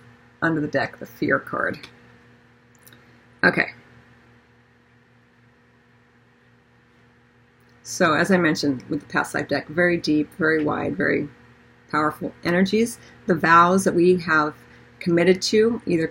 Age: 40-59